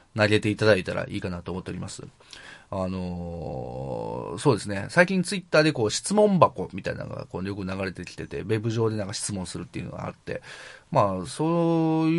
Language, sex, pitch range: Japanese, male, 95-130 Hz